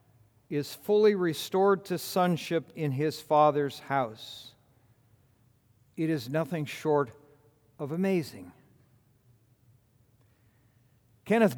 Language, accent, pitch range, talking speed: English, American, 120-170 Hz, 85 wpm